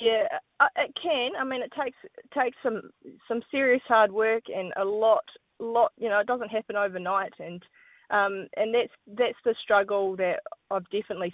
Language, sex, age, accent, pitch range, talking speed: English, female, 20-39, Australian, 170-210 Hz, 180 wpm